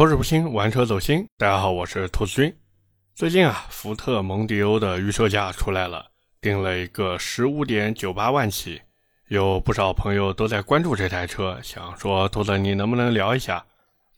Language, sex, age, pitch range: Chinese, male, 20-39, 95-120 Hz